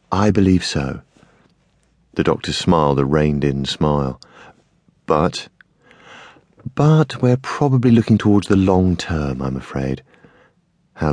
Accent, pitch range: British, 80-115 Hz